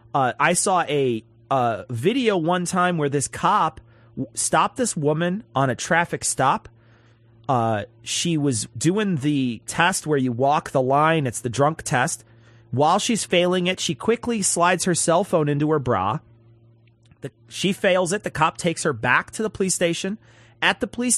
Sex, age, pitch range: male, 30-49, 125-195 Hz